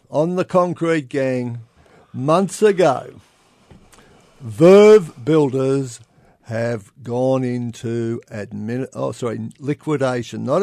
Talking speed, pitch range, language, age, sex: 90 wpm, 120-150 Hz, English, 50-69, male